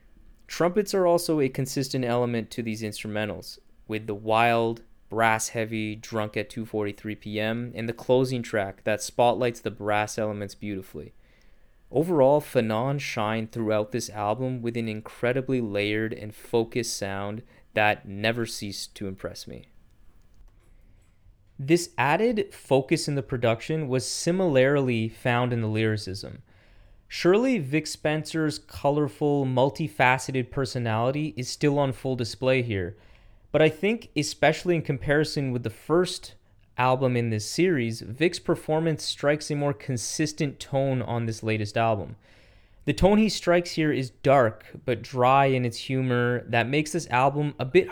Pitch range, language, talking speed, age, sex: 110-145 Hz, English, 140 wpm, 20-39, male